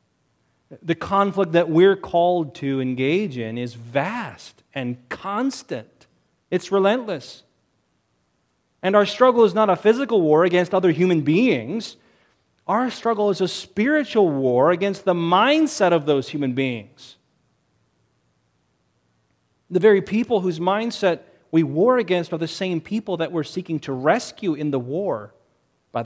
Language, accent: English, American